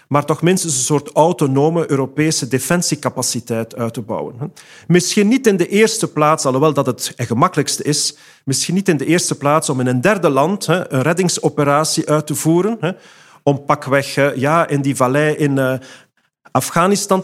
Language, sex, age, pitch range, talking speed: English, male, 40-59, 140-175 Hz, 155 wpm